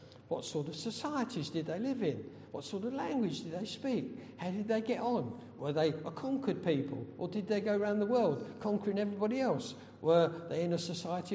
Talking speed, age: 210 wpm, 60-79